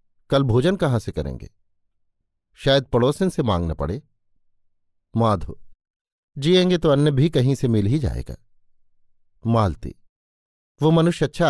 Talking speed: 125 wpm